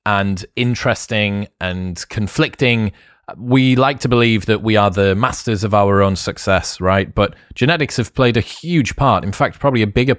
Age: 30-49